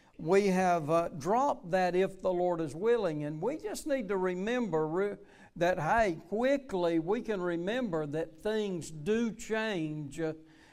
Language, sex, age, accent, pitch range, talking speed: English, male, 60-79, American, 165-210 Hz, 150 wpm